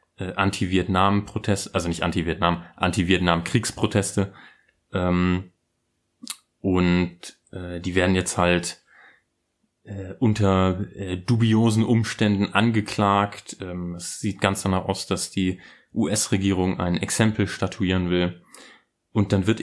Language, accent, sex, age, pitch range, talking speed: German, German, male, 30-49, 95-110 Hz, 90 wpm